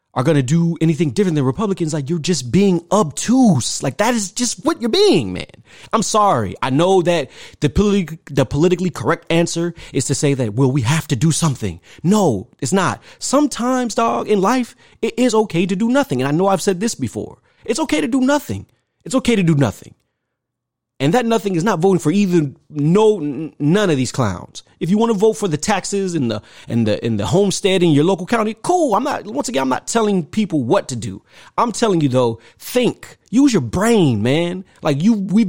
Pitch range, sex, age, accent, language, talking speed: 150-215 Hz, male, 30-49, American, English, 215 wpm